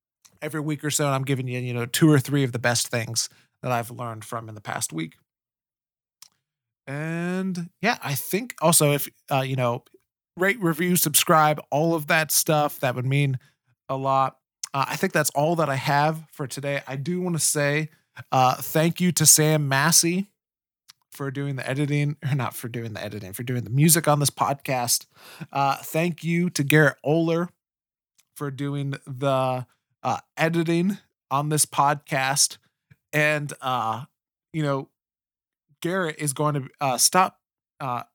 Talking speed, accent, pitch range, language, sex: 170 wpm, American, 130-155 Hz, English, male